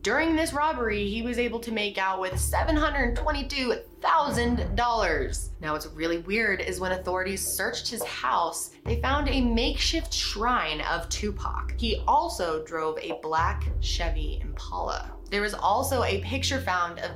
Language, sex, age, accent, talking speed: English, female, 20-39, American, 145 wpm